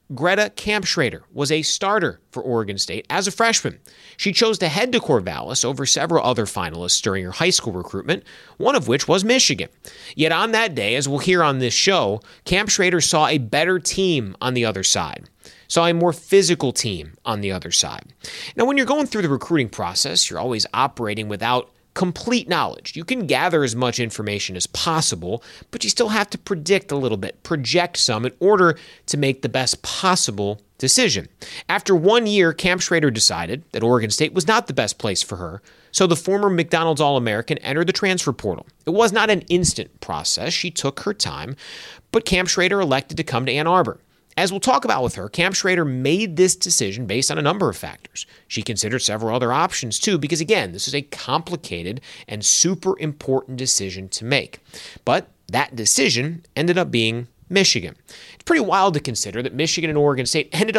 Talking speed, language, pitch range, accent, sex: 195 wpm, English, 115-180 Hz, American, male